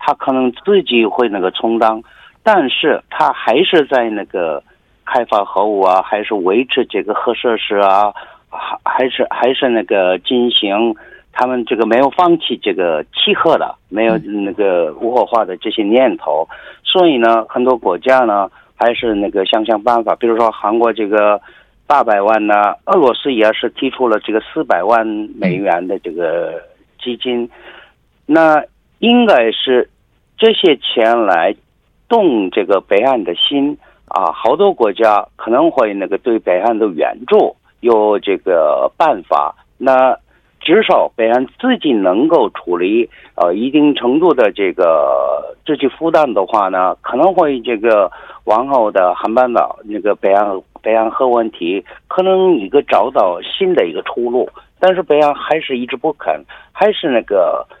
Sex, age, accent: male, 50-69, Chinese